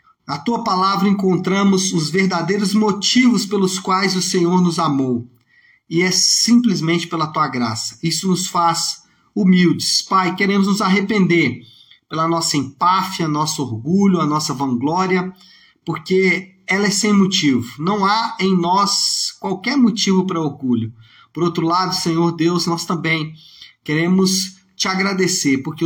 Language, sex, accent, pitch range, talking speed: Portuguese, male, Brazilian, 135-190 Hz, 135 wpm